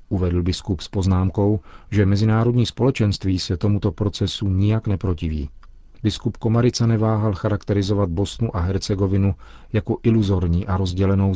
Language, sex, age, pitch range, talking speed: Czech, male, 40-59, 90-105 Hz, 120 wpm